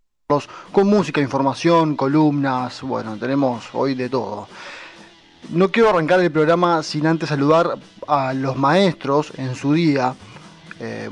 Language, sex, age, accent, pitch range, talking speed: Spanish, male, 20-39, Argentinian, 125-155 Hz, 130 wpm